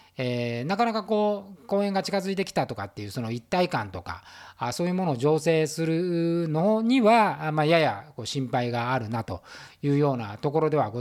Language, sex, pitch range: Japanese, male, 120-195 Hz